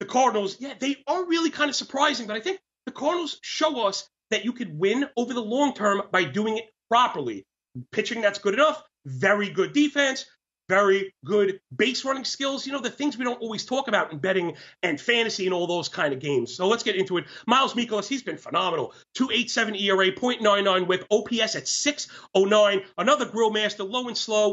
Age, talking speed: 30-49, 200 wpm